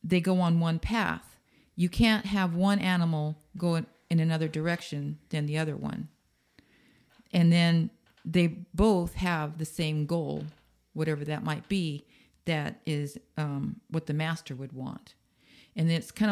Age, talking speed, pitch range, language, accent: 50-69, 155 wpm, 155-180 Hz, English, American